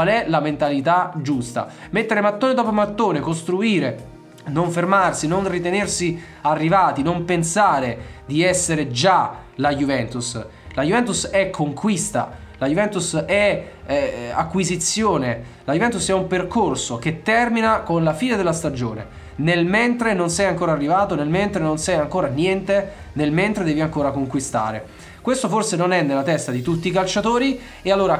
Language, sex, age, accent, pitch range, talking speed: Italian, male, 20-39, native, 150-195 Hz, 155 wpm